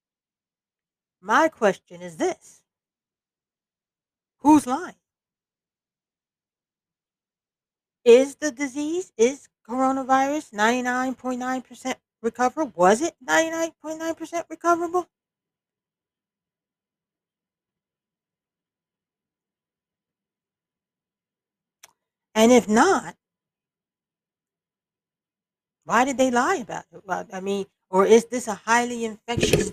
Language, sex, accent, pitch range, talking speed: English, female, American, 190-265 Hz, 70 wpm